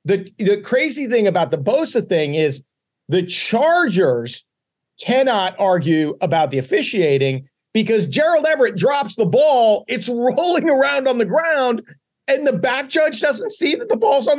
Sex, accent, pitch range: male, American, 190-250 Hz